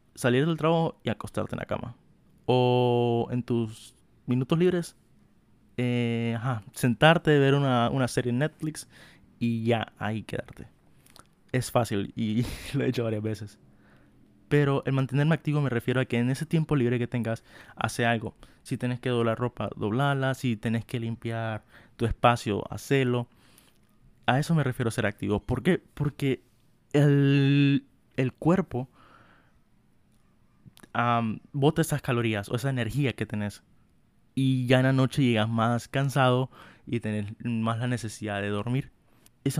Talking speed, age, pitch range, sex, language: 155 wpm, 20-39, 110-135 Hz, male, Spanish